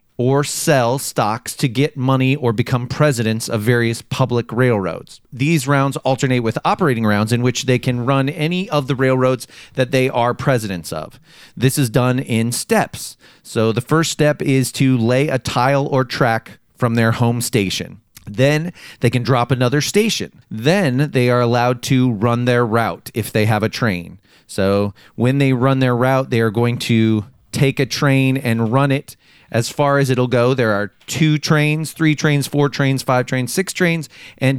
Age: 30-49